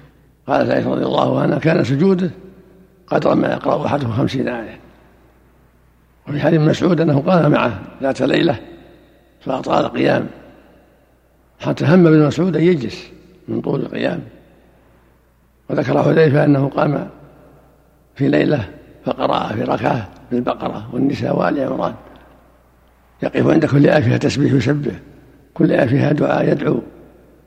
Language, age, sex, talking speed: Arabic, 60-79, male, 120 wpm